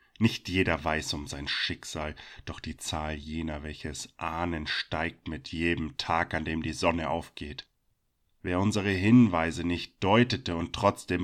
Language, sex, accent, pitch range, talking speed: German, male, German, 80-95 Hz, 150 wpm